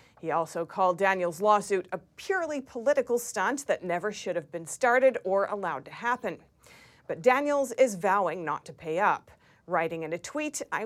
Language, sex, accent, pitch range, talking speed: English, female, American, 185-245 Hz, 175 wpm